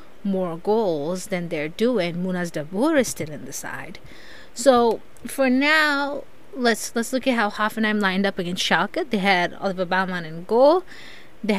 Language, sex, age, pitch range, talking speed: English, female, 20-39, 185-260 Hz, 165 wpm